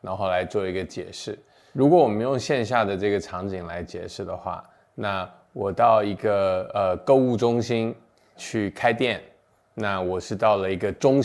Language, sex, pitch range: Chinese, male, 90-105 Hz